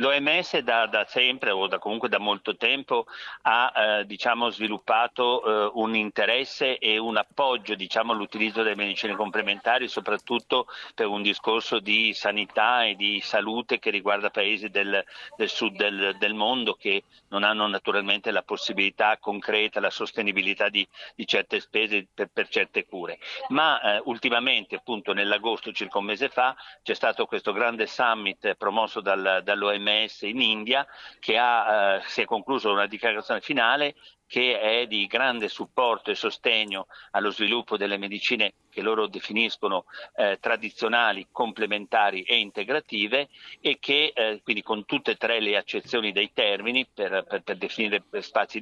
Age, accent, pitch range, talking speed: 50-69, native, 100-120 Hz, 155 wpm